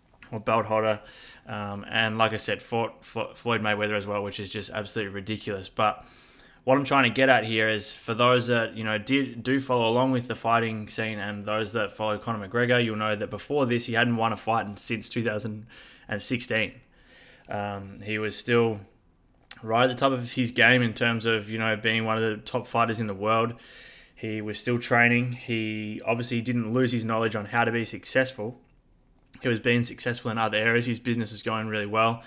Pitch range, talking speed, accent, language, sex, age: 105-120 Hz, 205 wpm, Australian, English, male, 20-39